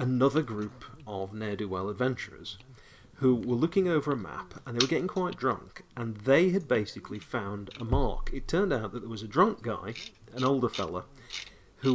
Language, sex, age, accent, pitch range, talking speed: English, male, 40-59, British, 100-130 Hz, 185 wpm